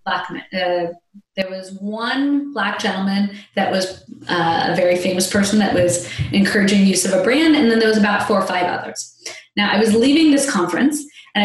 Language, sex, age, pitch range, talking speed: English, female, 20-39, 180-220 Hz, 200 wpm